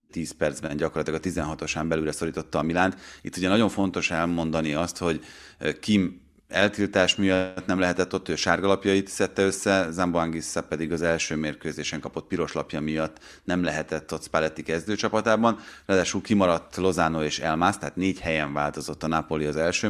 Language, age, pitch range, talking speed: Hungarian, 30-49, 80-95 Hz, 155 wpm